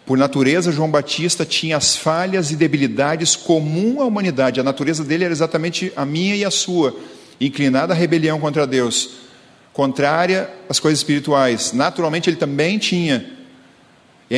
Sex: male